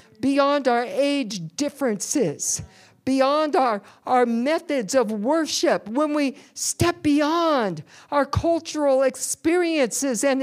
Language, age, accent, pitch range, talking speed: English, 50-69, American, 265-360 Hz, 105 wpm